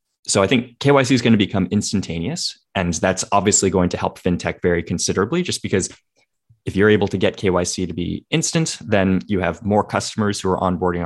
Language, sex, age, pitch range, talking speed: English, male, 20-39, 90-110 Hz, 200 wpm